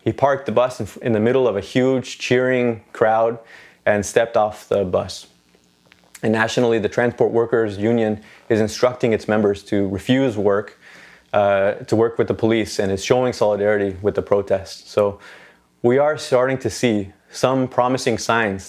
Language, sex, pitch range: Danish, male, 100-120 Hz